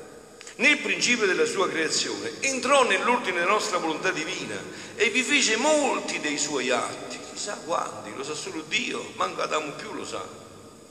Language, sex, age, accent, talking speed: Italian, male, 50-69, native, 160 wpm